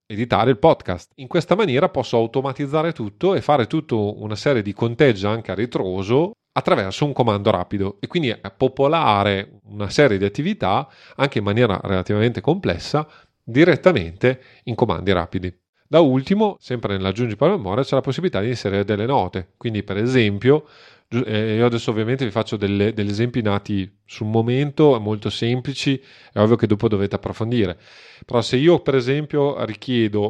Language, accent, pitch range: Italian, native, 105-135 Hz